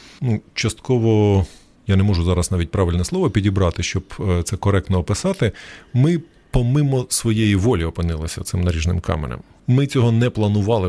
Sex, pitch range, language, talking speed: male, 90-120 Hz, Ukrainian, 145 wpm